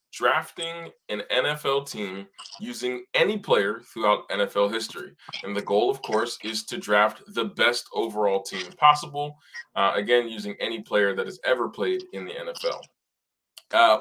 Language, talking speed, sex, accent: English, 155 wpm, male, American